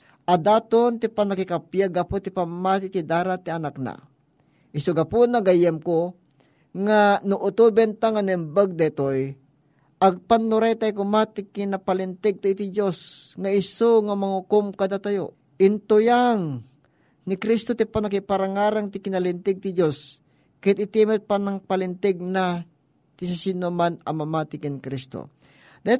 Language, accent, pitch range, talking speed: Filipino, native, 175-220 Hz, 120 wpm